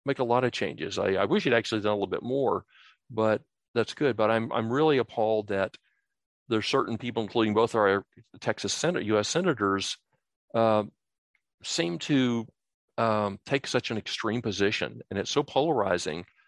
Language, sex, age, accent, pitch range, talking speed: English, male, 50-69, American, 100-115 Hz, 170 wpm